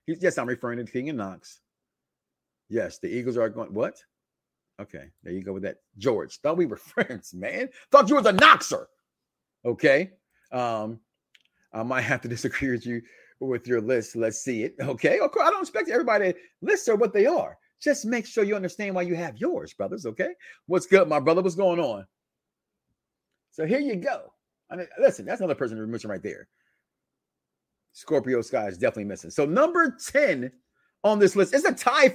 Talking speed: 190 wpm